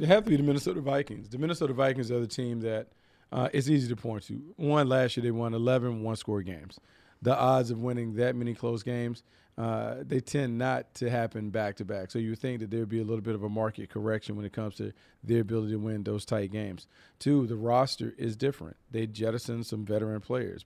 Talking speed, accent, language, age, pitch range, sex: 225 wpm, American, English, 40-59, 110-125 Hz, male